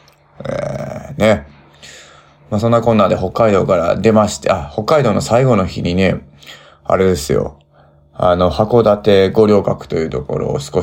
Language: Japanese